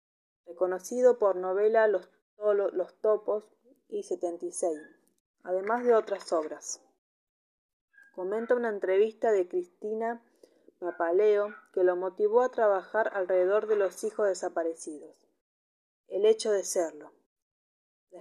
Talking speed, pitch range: 110 wpm, 185-225 Hz